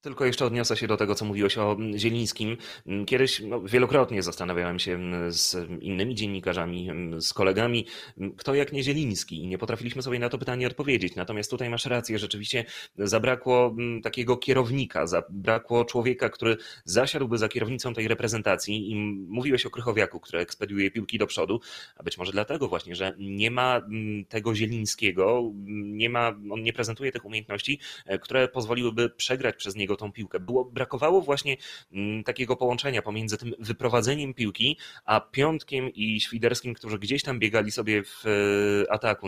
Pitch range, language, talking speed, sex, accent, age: 100-125 Hz, Polish, 155 wpm, male, native, 30-49